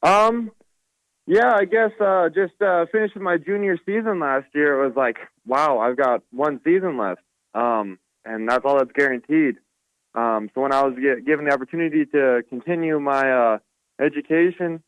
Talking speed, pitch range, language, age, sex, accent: 165 wpm, 115-140 Hz, English, 20-39, male, American